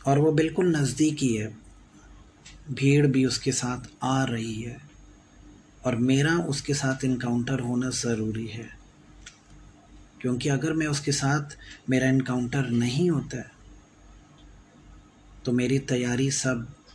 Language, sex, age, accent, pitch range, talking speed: English, male, 30-49, Indian, 100-130 Hz, 120 wpm